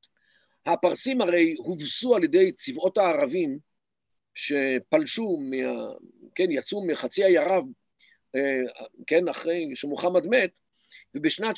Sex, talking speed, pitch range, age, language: male, 100 wpm, 160-230 Hz, 50-69, Hebrew